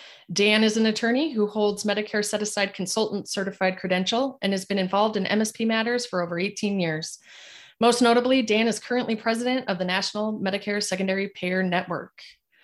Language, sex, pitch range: English, female, 190-230 Hz